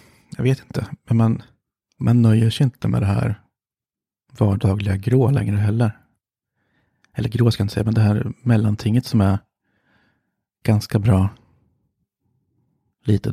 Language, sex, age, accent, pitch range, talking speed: Swedish, male, 30-49, native, 105-120 Hz, 140 wpm